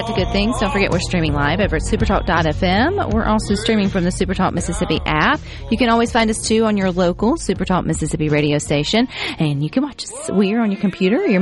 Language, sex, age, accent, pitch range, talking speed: English, female, 40-59, American, 150-205 Hz, 240 wpm